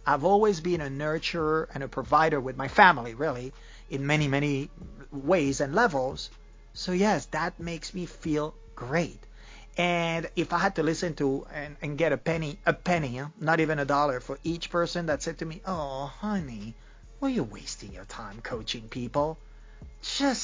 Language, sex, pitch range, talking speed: English, male, 140-180 Hz, 180 wpm